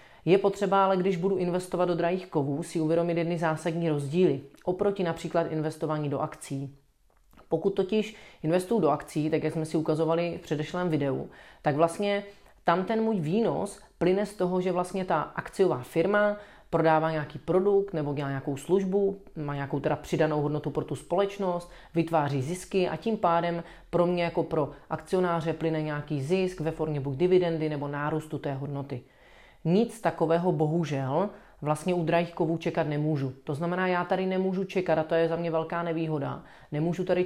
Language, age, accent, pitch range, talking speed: Czech, 30-49, native, 155-185 Hz, 170 wpm